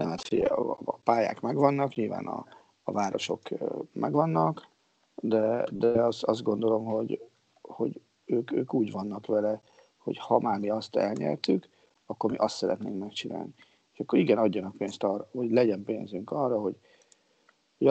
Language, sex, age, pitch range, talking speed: Hungarian, male, 40-59, 105-135 Hz, 150 wpm